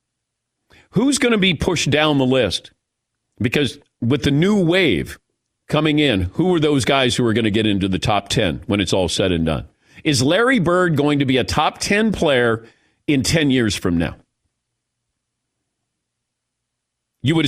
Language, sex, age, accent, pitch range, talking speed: English, male, 50-69, American, 120-175 Hz, 175 wpm